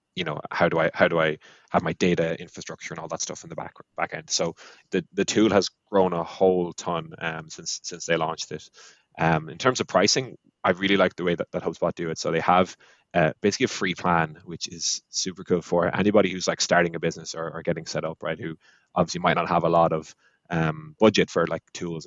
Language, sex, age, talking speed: English, male, 20-39, 240 wpm